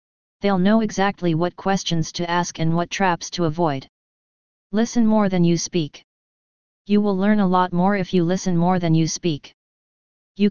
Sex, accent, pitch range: female, American, 165-190 Hz